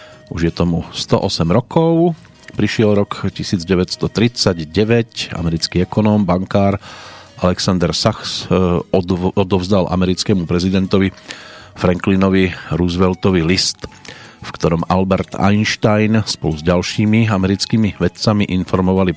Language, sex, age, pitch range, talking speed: Slovak, male, 40-59, 90-110 Hz, 90 wpm